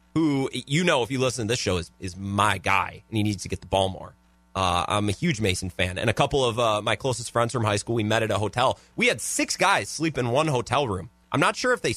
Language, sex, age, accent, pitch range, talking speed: English, male, 30-49, American, 100-140 Hz, 285 wpm